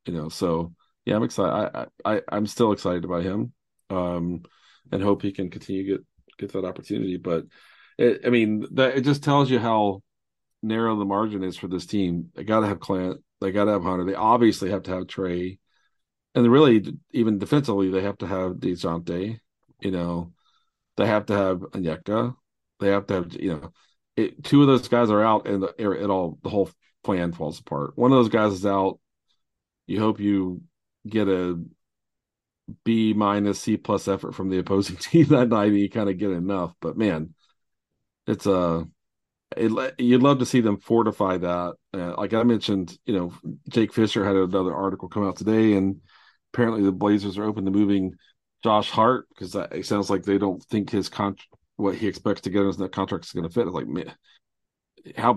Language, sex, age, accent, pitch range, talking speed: English, male, 40-59, American, 95-110 Hz, 200 wpm